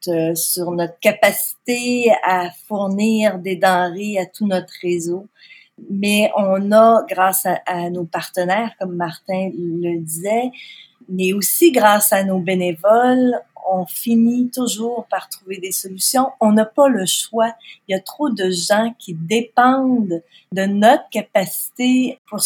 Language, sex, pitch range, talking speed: French, female, 185-250 Hz, 140 wpm